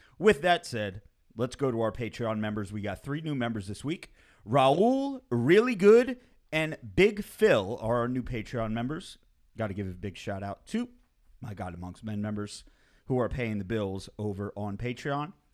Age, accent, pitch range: 30-49, American, 105-150 Hz